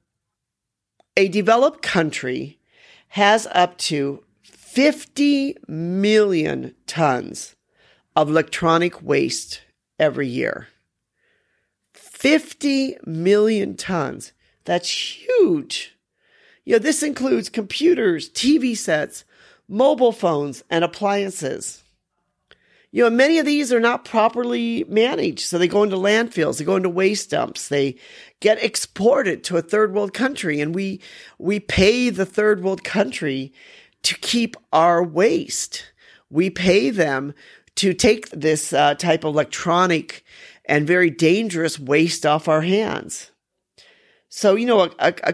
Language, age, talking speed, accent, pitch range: English, 40-59, 120 wpm, American, 165-245 Hz